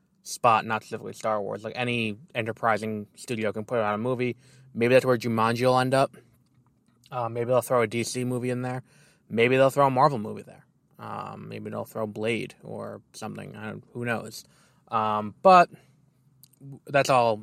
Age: 20-39